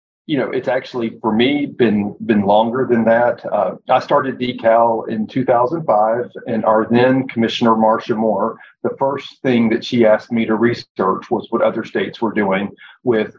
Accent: American